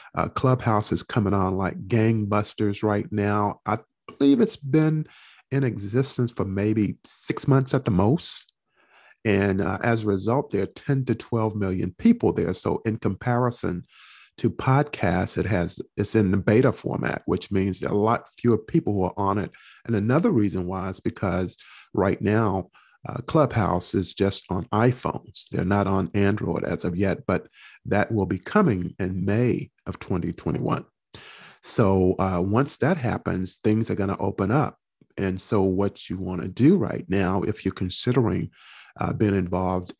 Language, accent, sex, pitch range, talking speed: English, American, male, 95-115 Hz, 170 wpm